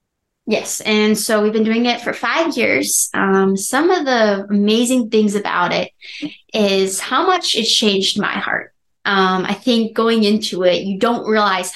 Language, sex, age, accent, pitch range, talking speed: English, female, 20-39, American, 195-225 Hz, 175 wpm